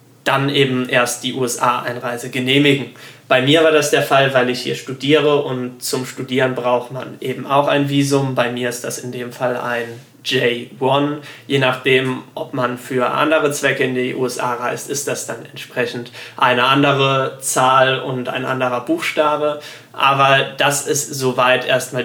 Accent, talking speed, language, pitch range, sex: German, 165 wpm, German, 125-145 Hz, male